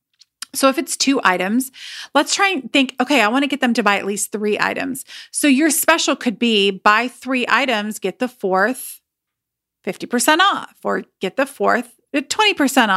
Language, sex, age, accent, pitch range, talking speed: English, female, 30-49, American, 220-280 Hz, 175 wpm